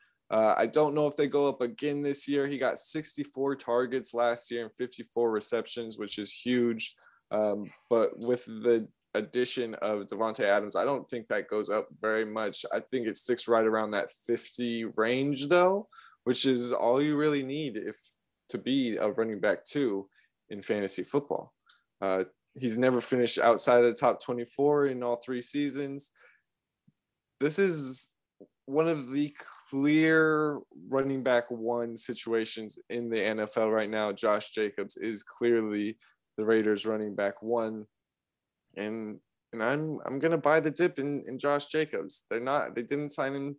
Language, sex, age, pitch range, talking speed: English, male, 20-39, 115-140 Hz, 165 wpm